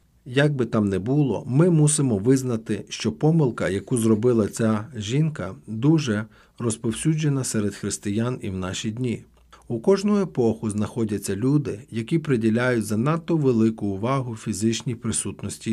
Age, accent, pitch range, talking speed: 40-59, native, 105-145 Hz, 130 wpm